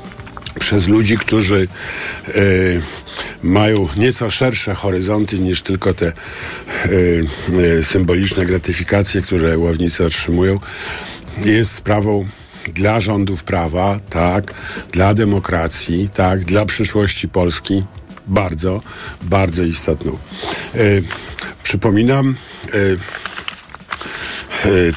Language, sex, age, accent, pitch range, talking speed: Polish, male, 50-69, native, 85-100 Hz, 90 wpm